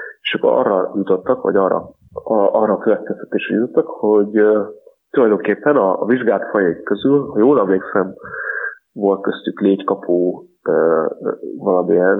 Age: 30-49